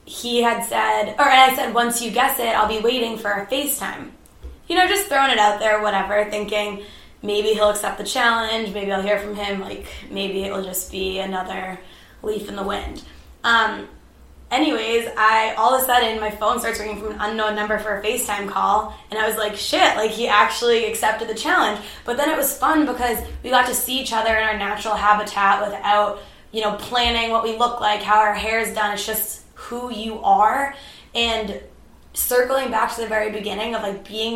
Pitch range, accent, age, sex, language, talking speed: 205-235 Hz, American, 20-39, female, English, 210 wpm